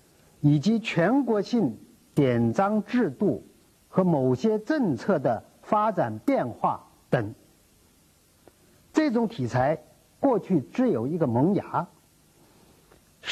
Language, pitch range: Chinese, 155-245 Hz